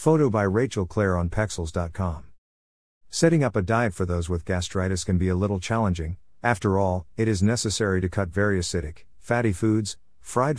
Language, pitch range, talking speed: English, 85-115 Hz, 175 wpm